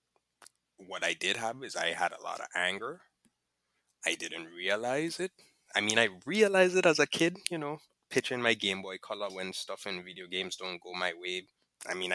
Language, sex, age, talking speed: English, male, 20-39, 205 wpm